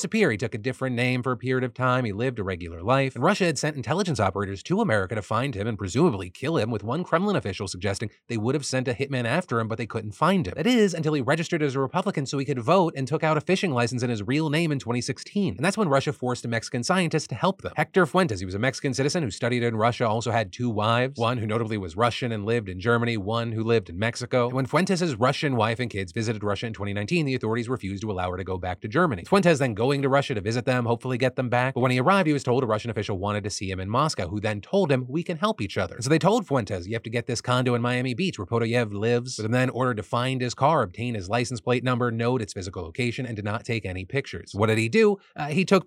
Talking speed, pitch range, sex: 285 wpm, 110-150 Hz, male